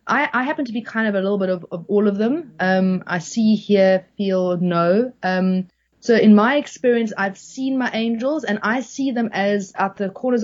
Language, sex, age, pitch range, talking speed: English, female, 30-49, 185-225 Hz, 220 wpm